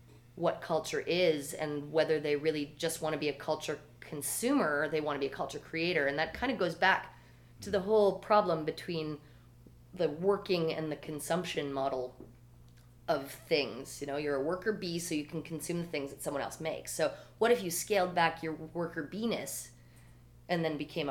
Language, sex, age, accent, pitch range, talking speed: English, female, 30-49, American, 145-185 Hz, 195 wpm